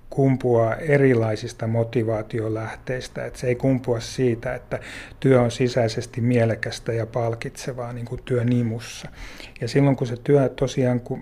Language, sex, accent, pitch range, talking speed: Finnish, male, native, 115-130 Hz, 125 wpm